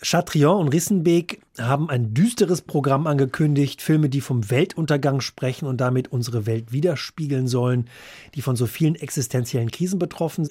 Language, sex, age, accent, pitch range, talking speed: German, male, 30-49, German, 125-160 Hz, 150 wpm